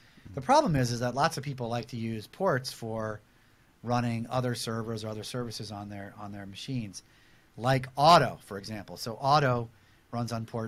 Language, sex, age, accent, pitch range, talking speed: English, male, 40-59, American, 110-130 Hz, 185 wpm